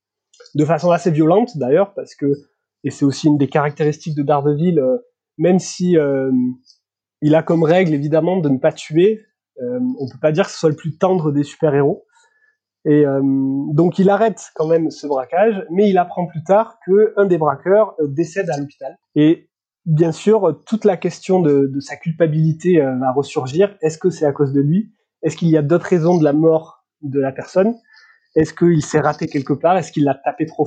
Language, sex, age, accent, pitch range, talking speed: French, male, 20-39, French, 145-190 Hz, 205 wpm